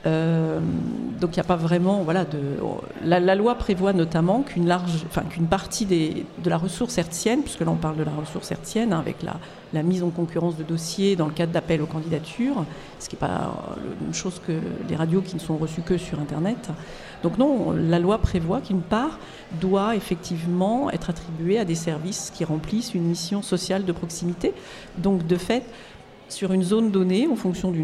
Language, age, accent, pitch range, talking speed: French, 50-69, French, 165-195 Hz, 205 wpm